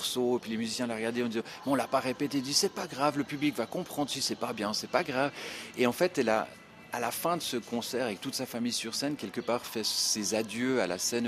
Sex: male